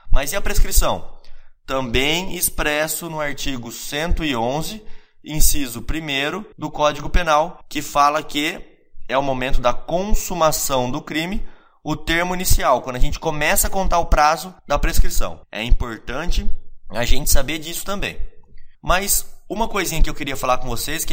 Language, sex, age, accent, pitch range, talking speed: Portuguese, male, 20-39, Brazilian, 135-175 Hz, 155 wpm